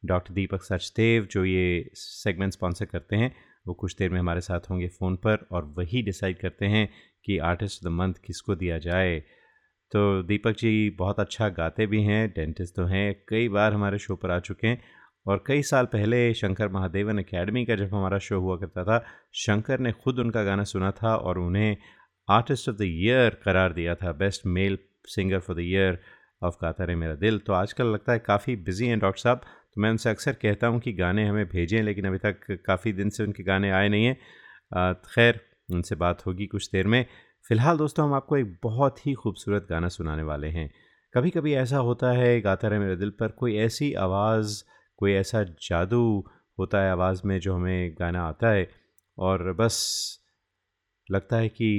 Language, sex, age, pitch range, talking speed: Hindi, male, 30-49, 90-110 Hz, 195 wpm